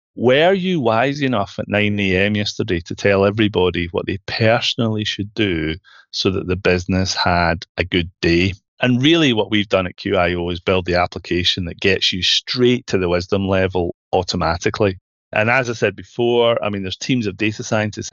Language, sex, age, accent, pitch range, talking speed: English, male, 30-49, British, 90-115 Hz, 185 wpm